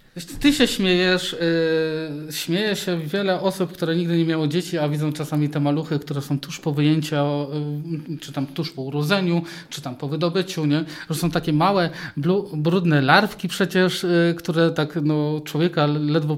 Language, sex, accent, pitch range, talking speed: Polish, male, native, 150-175 Hz, 160 wpm